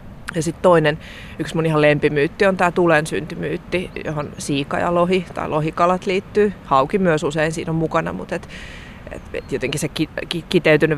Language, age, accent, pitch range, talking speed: Finnish, 30-49, native, 150-190 Hz, 165 wpm